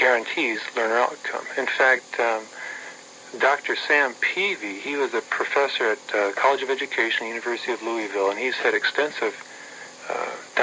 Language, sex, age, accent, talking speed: English, male, 40-59, American, 140 wpm